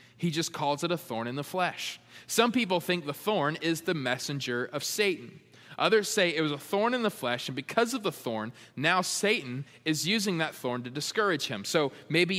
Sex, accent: male, American